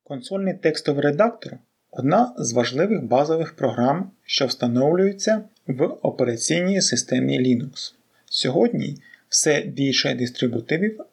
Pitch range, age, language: 135-225 Hz, 30-49, English